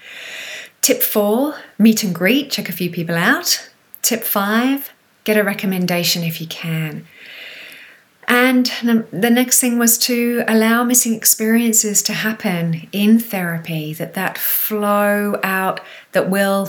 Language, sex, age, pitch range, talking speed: English, female, 30-49, 175-220 Hz, 135 wpm